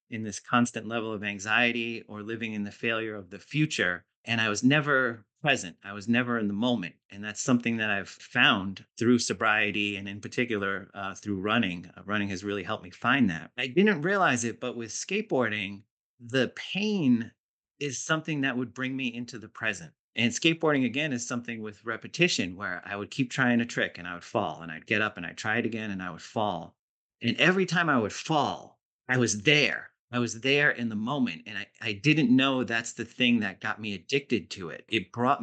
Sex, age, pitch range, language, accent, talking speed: male, 30-49, 105-125 Hz, English, American, 215 wpm